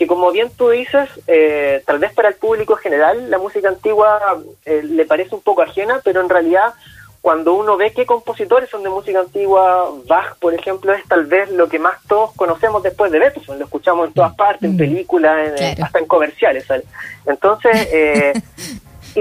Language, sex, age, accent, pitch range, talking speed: Spanish, male, 30-49, Argentinian, 160-215 Hz, 195 wpm